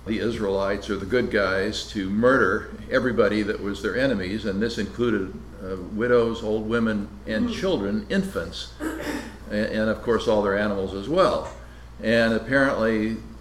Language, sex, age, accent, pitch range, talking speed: English, male, 60-79, American, 95-115 Hz, 150 wpm